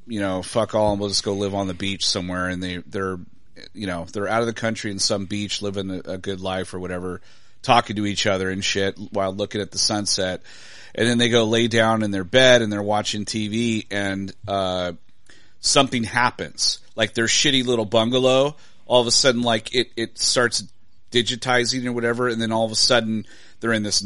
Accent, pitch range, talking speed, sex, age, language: American, 100-115 Hz, 215 wpm, male, 30-49, English